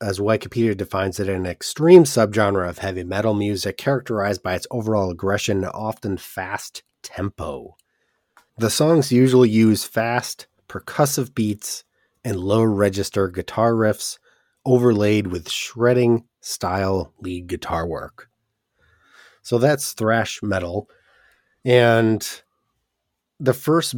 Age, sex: 30-49, male